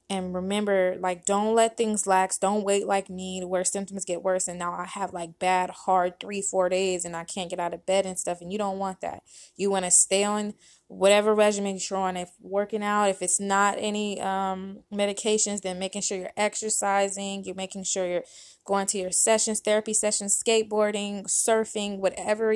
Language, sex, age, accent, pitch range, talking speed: English, female, 20-39, American, 180-205 Hz, 200 wpm